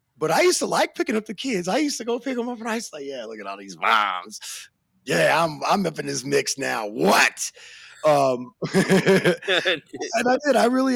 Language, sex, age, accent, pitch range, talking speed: English, male, 30-49, American, 135-215 Hz, 225 wpm